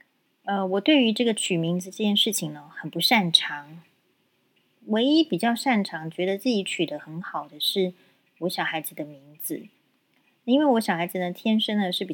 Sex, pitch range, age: female, 165-215 Hz, 30-49